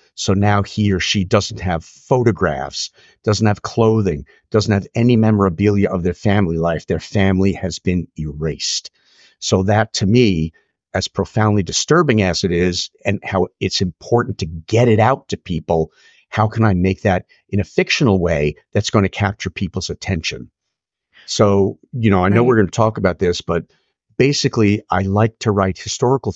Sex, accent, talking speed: male, American, 175 wpm